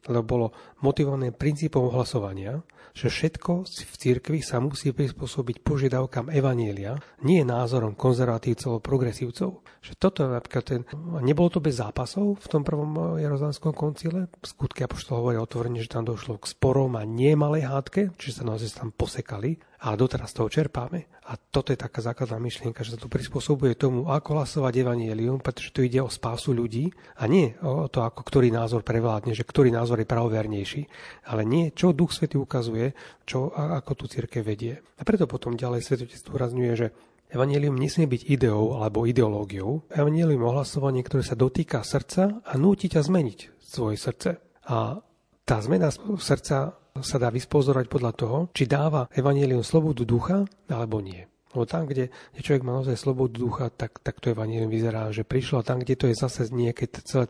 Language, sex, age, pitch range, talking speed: Slovak, male, 40-59, 120-145 Hz, 165 wpm